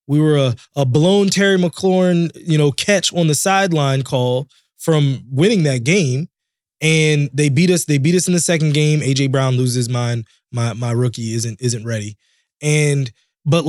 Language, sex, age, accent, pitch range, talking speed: English, male, 20-39, American, 130-160 Hz, 180 wpm